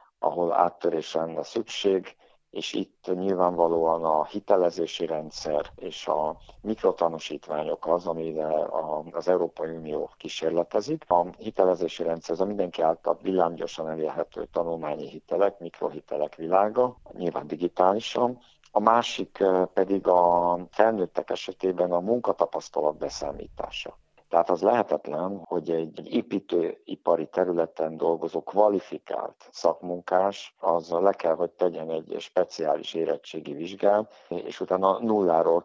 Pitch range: 80-95 Hz